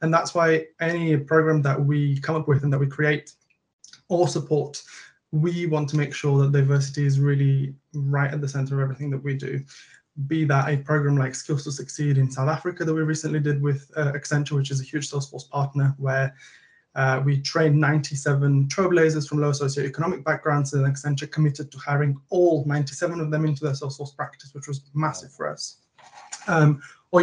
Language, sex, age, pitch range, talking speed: English, male, 20-39, 140-160 Hz, 190 wpm